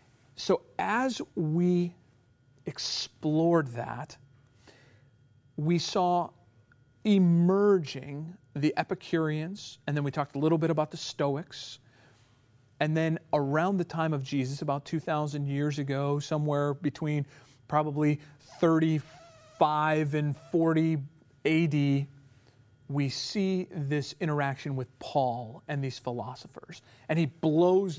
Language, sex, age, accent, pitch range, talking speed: English, male, 40-59, American, 130-160 Hz, 105 wpm